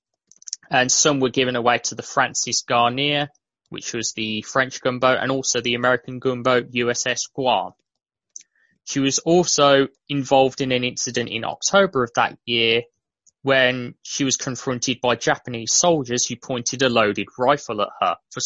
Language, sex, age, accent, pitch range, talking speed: English, male, 20-39, British, 120-145 Hz, 155 wpm